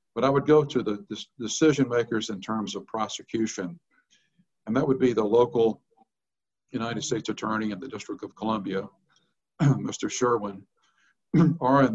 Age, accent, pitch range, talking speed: 50-69, American, 105-125 Hz, 145 wpm